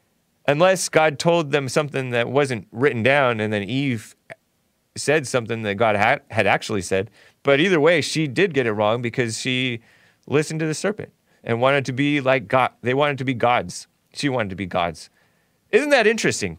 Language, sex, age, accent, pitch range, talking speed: English, male, 30-49, American, 110-145 Hz, 190 wpm